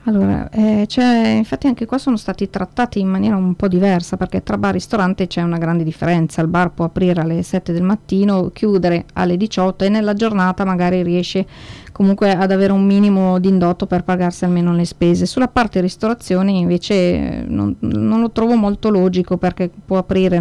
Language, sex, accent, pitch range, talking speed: Italian, female, native, 180-205 Hz, 185 wpm